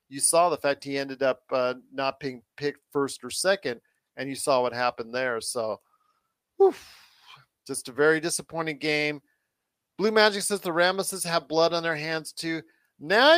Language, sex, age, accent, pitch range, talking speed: English, male, 40-59, American, 150-185 Hz, 175 wpm